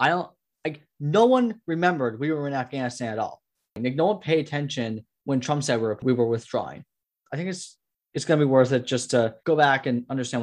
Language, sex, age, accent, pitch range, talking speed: English, male, 10-29, American, 120-145 Hz, 230 wpm